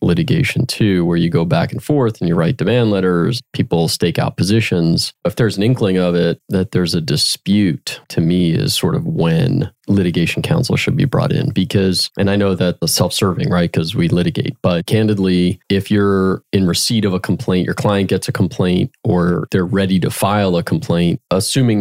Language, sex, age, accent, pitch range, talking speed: English, male, 30-49, American, 90-105 Hz, 200 wpm